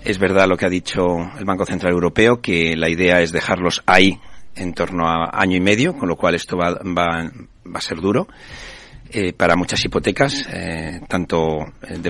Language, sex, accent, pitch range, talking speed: Spanish, male, Spanish, 90-120 Hz, 195 wpm